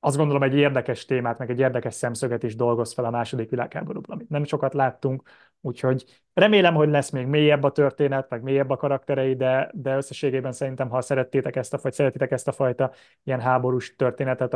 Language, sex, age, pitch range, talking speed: Hungarian, male, 20-39, 125-150 Hz, 190 wpm